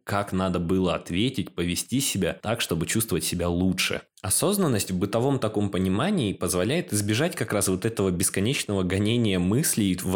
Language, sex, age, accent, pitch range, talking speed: Russian, male, 20-39, native, 90-115 Hz, 155 wpm